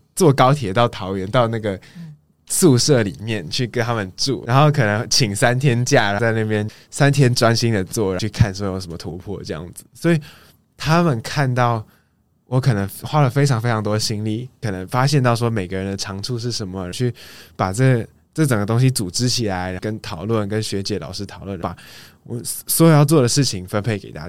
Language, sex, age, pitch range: Chinese, male, 20-39, 100-135 Hz